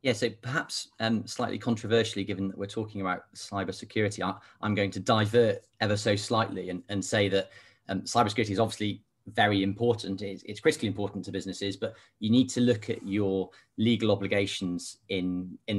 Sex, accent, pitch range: male, British, 100-115 Hz